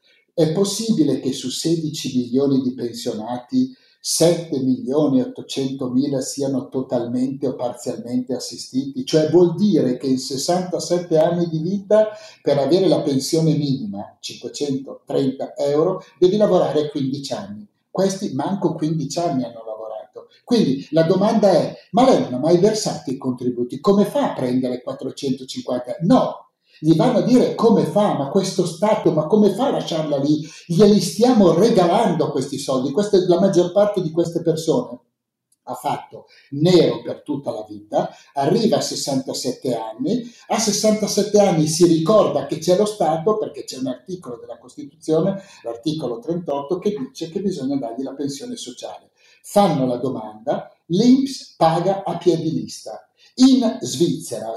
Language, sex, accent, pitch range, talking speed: Italian, male, native, 135-200 Hz, 150 wpm